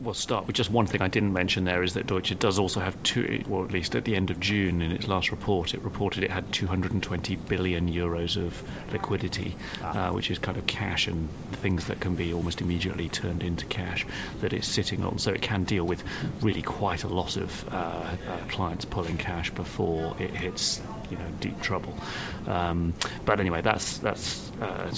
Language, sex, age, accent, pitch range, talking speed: English, male, 30-49, British, 90-110 Hz, 210 wpm